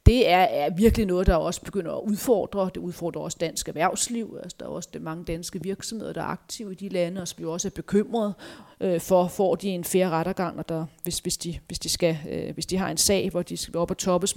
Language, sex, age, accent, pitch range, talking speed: Danish, female, 40-59, native, 170-200 Hz, 255 wpm